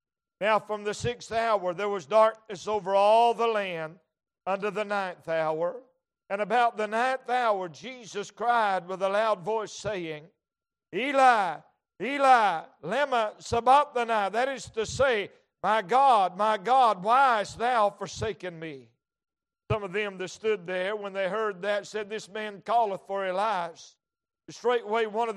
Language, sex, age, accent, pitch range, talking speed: English, male, 60-79, American, 195-235 Hz, 155 wpm